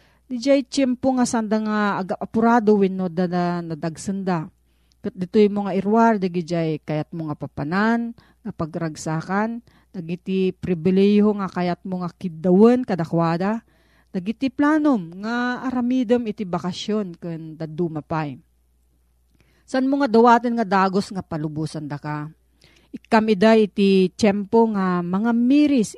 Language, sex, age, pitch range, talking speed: Filipino, female, 40-59, 170-220 Hz, 115 wpm